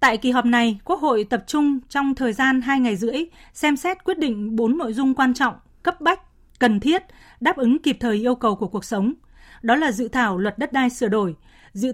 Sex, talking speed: female, 230 wpm